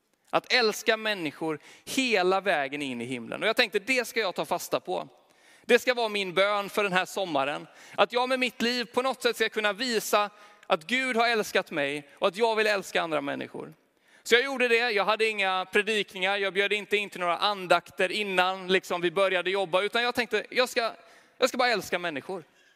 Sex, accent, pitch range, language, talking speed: male, native, 185-230 Hz, Swedish, 205 wpm